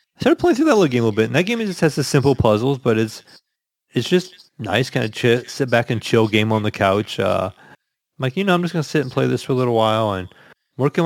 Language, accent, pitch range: English, American, 100-125 Hz